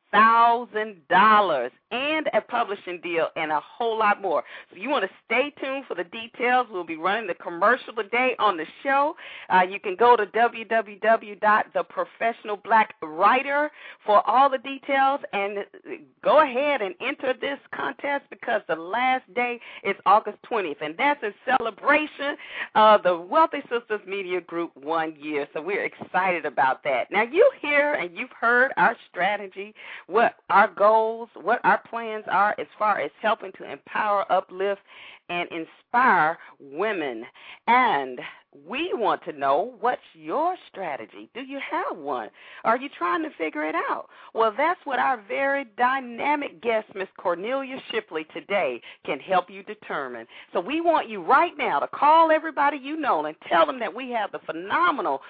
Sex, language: female, English